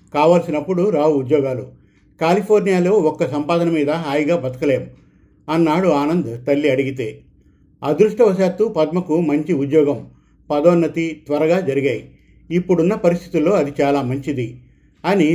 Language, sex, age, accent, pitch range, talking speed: Telugu, male, 50-69, native, 145-175 Hz, 100 wpm